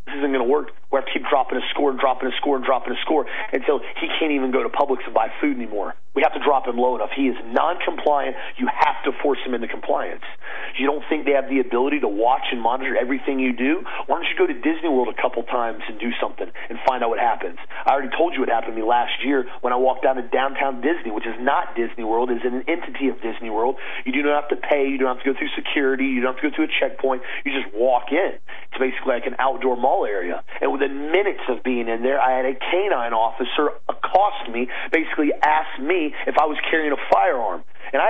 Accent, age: American, 40-59